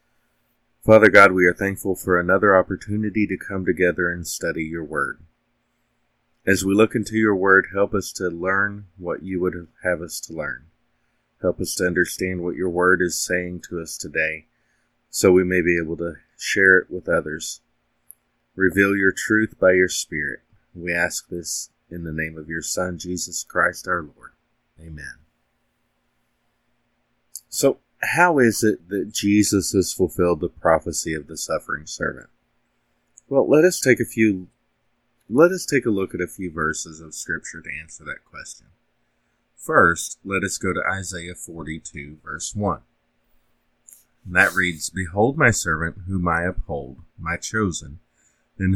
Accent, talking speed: American, 160 wpm